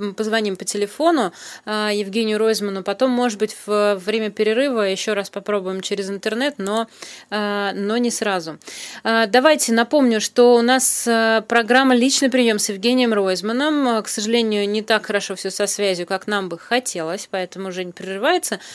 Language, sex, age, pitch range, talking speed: Russian, female, 20-39, 190-225 Hz, 150 wpm